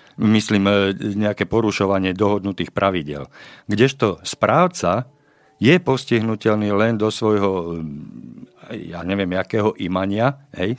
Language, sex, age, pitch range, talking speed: Slovak, male, 50-69, 95-115 Hz, 95 wpm